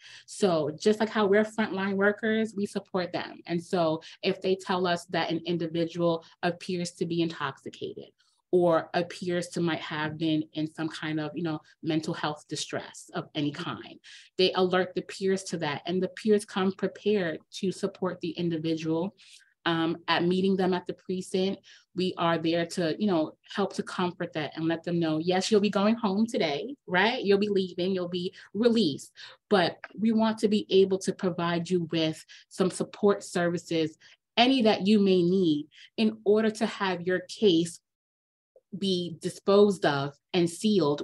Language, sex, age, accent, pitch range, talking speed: English, female, 20-39, American, 165-205 Hz, 175 wpm